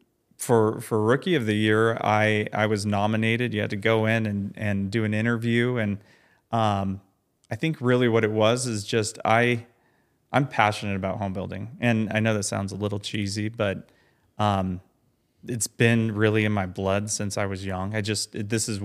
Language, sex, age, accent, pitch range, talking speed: English, male, 30-49, American, 100-110 Hz, 190 wpm